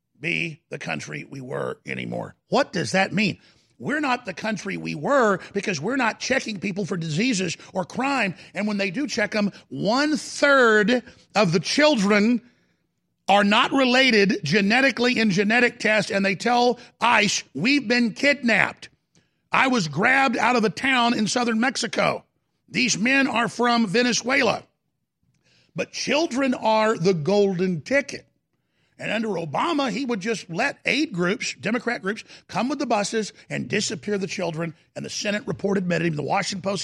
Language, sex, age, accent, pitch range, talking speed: English, male, 50-69, American, 185-240 Hz, 160 wpm